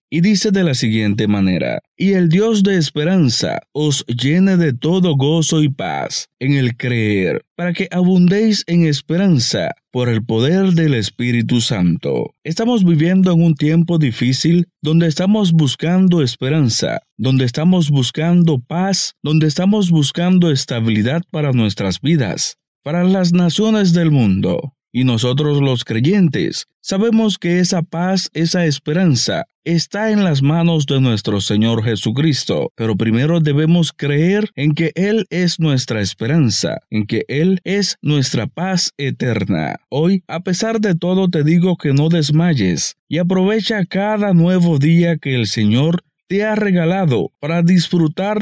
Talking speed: 145 wpm